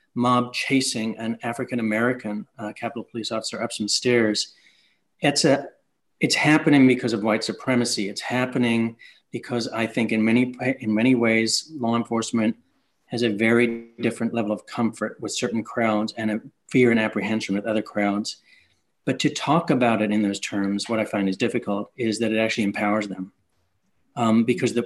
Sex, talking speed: male, 170 wpm